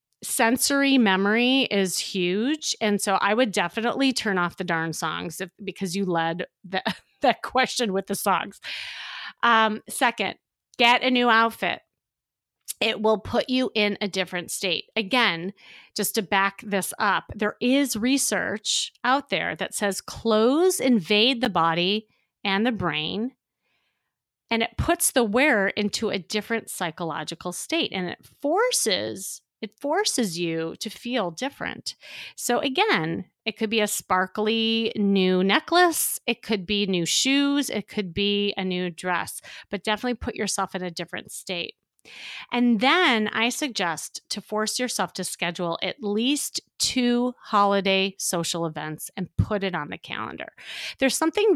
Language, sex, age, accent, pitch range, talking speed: English, female, 30-49, American, 190-245 Hz, 150 wpm